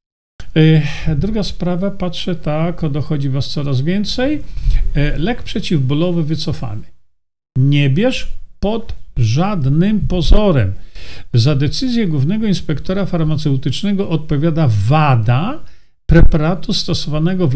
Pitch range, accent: 130-175 Hz, native